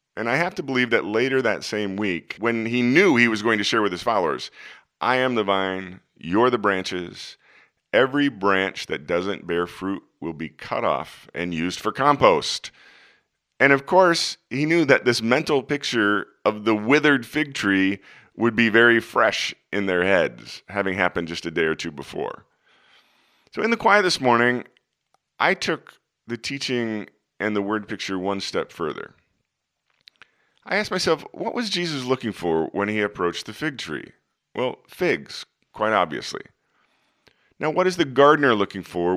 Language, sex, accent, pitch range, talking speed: English, male, American, 95-140 Hz, 175 wpm